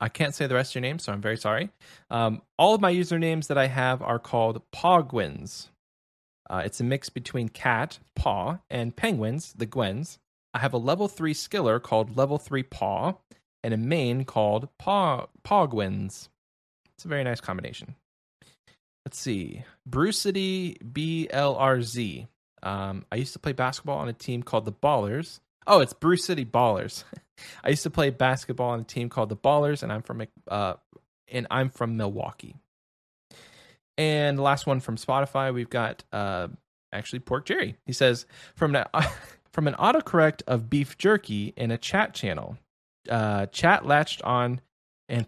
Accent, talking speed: American, 165 wpm